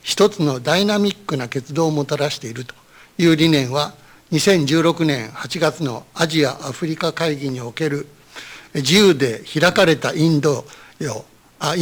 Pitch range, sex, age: 145-180 Hz, male, 60-79